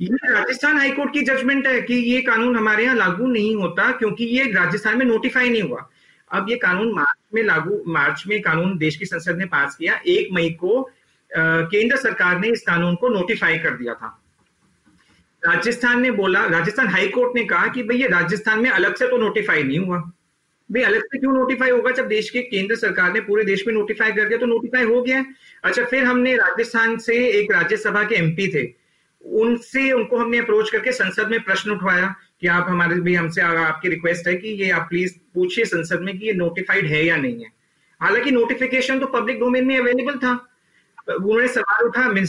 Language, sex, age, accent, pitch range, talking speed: Hindi, male, 40-59, native, 180-245 Hz, 180 wpm